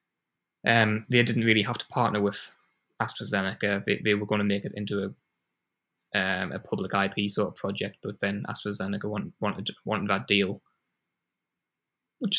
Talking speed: 160 wpm